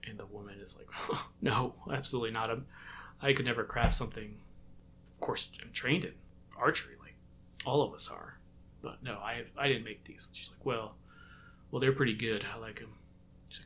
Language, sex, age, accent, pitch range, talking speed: English, male, 30-49, American, 90-135 Hz, 195 wpm